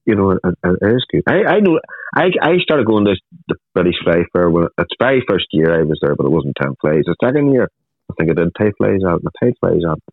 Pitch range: 75-100 Hz